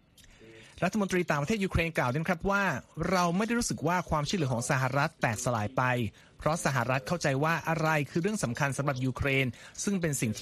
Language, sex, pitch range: Thai, male, 130-175 Hz